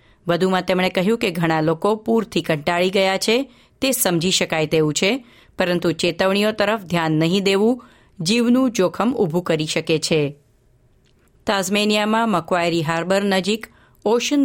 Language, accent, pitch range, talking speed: Gujarati, native, 165-215 Hz, 135 wpm